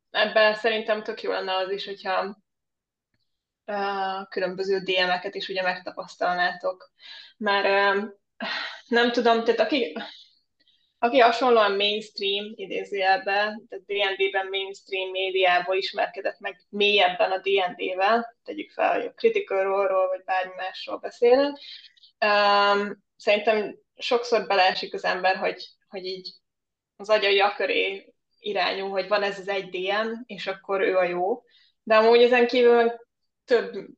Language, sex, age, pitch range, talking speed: Hungarian, female, 20-39, 195-230 Hz, 130 wpm